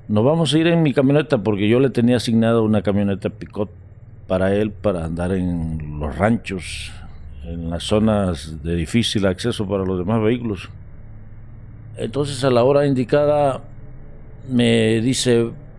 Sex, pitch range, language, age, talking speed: male, 95-135 Hz, Spanish, 50-69, 150 wpm